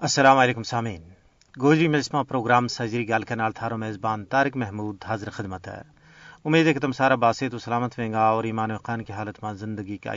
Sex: male